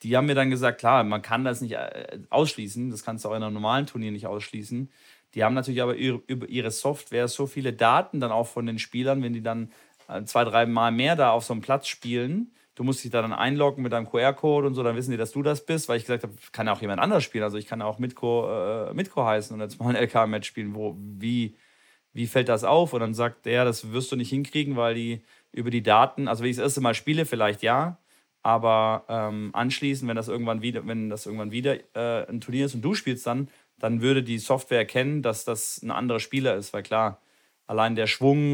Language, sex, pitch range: German, male, 110-130 Hz